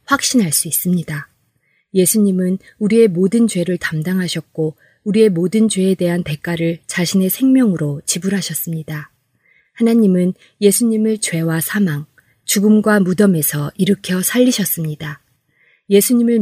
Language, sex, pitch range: Korean, female, 160-210 Hz